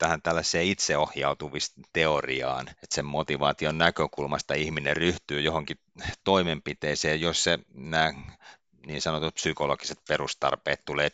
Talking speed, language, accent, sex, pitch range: 95 wpm, Finnish, native, male, 70-80 Hz